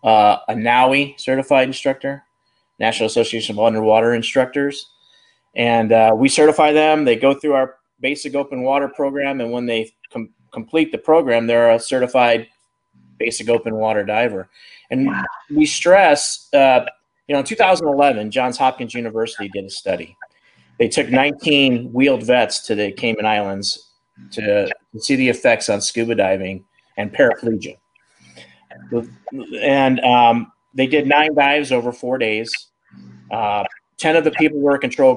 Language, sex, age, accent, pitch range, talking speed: English, male, 30-49, American, 115-140 Hz, 145 wpm